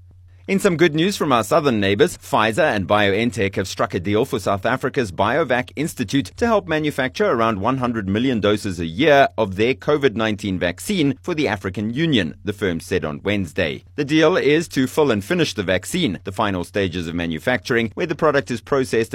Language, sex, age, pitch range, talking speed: English, male, 30-49, 95-135 Hz, 190 wpm